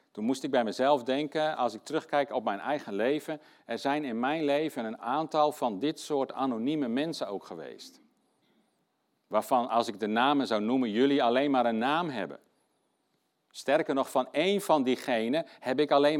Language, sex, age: Dutch, male, 50-69